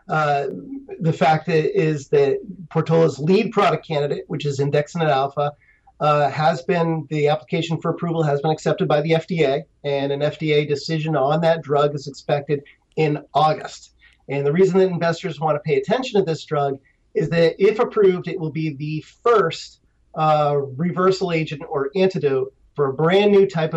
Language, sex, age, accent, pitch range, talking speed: English, male, 40-59, American, 140-165 Hz, 175 wpm